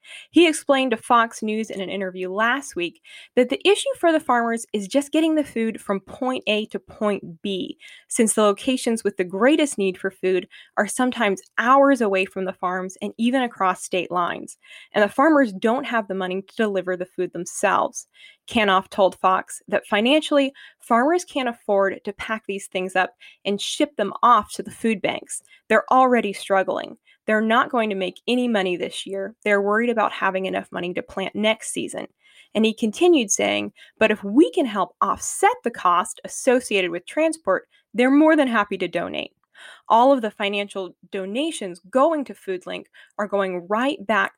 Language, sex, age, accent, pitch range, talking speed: English, female, 20-39, American, 195-260 Hz, 185 wpm